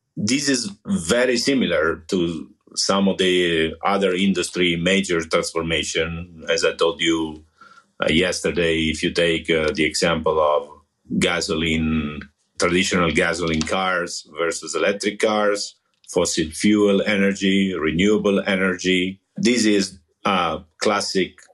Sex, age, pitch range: male, 50-69, 85-105 Hz